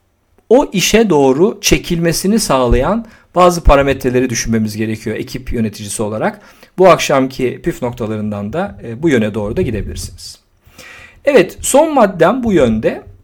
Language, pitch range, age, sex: Turkish, 120-185 Hz, 50-69, male